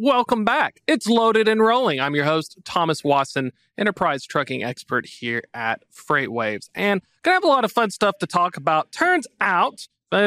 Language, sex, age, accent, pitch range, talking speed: English, male, 40-59, American, 145-205 Hz, 185 wpm